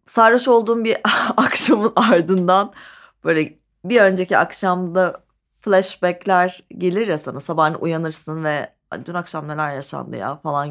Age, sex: 30-49, female